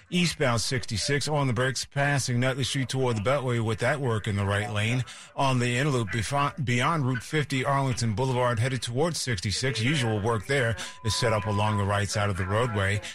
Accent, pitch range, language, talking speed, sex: American, 110-140 Hz, English, 190 wpm, male